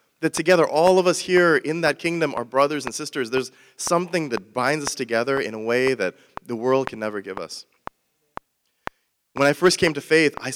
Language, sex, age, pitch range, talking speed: English, male, 30-49, 115-145 Hz, 205 wpm